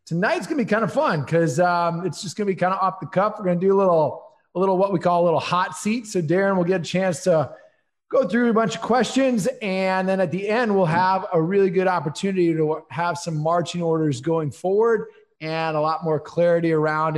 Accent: American